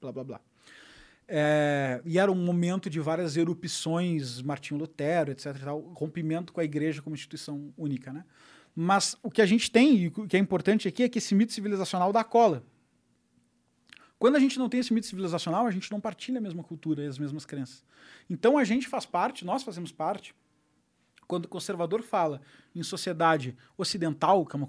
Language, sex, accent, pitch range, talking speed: Portuguese, male, Brazilian, 145-195 Hz, 195 wpm